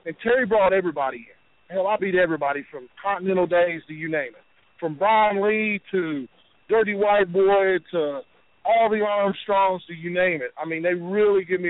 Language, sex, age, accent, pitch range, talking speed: English, male, 40-59, American, 155-195 Hz, 190 wpm